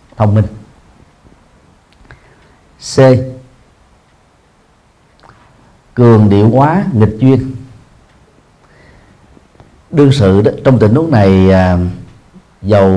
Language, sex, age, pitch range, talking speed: Vietnamese, male, 40-59, 100-130 Hz, 75 wpm